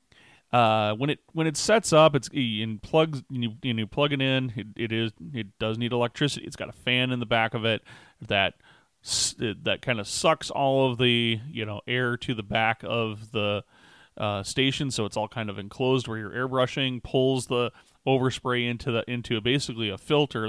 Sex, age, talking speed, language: male, 30-49, 200 wpm, English